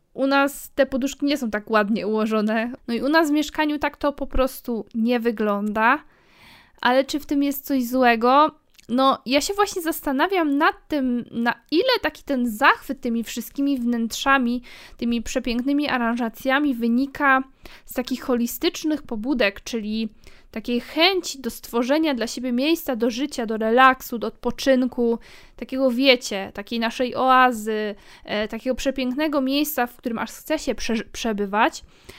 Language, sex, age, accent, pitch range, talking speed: Polish, female, 20-39, native, 220-270 Hz, 145 wpm